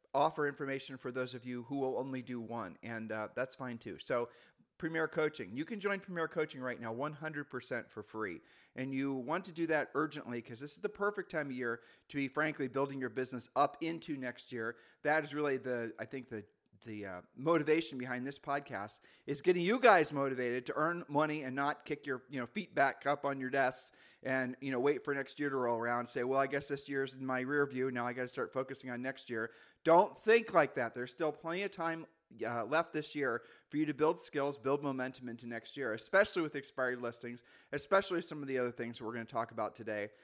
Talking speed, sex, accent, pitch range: 230 wpm, male, American, 130-165 Hz